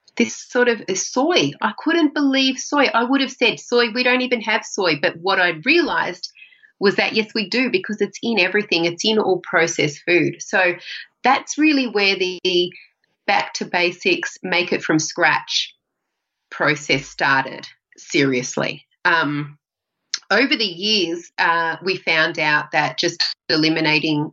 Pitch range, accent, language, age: 150-210 Hz, Australian, English, 30-49